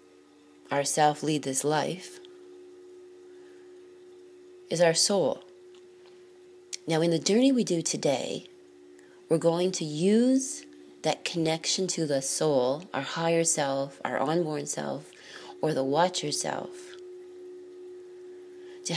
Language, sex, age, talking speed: English, female, 30-49, 110 wpm